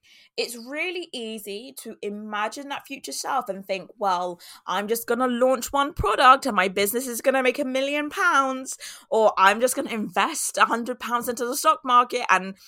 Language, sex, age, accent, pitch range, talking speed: English, female, 20-39, British, 195-255 Hz, 185 wpm